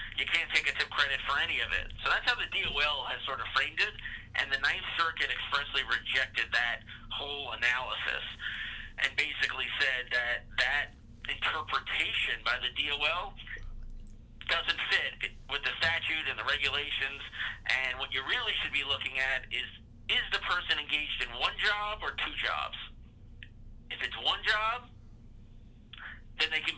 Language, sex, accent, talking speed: English, male, American, 160 wpm